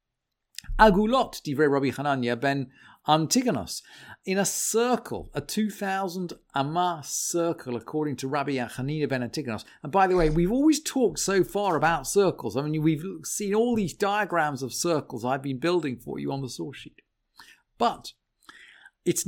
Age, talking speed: 50-69, 150 wpm